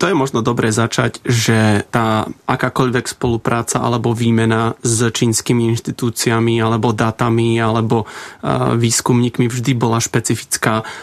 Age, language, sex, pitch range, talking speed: 20-39, Czech, male, 115-130 Hz, 115 wpm